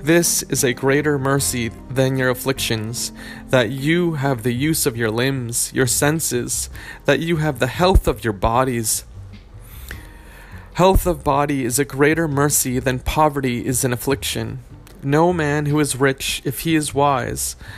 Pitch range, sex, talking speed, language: 115-145 Hz, male, 160 wpm, English